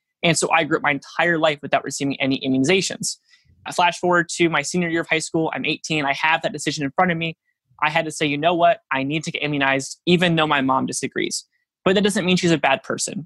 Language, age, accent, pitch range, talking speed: English, 20-39, American, 140-170 Hz, 260 wpm